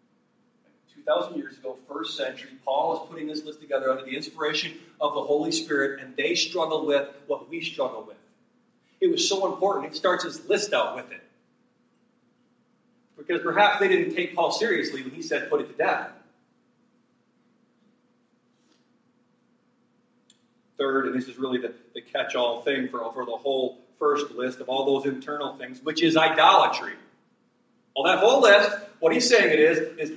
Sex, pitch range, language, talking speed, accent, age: male, 155-245 Hz, English, 170 wpm, American, 40-59